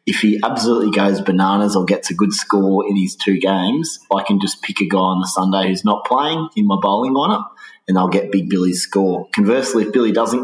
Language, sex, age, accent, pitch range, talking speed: English, male, 30-49, Australian, 90-105 Hz, 230 wpm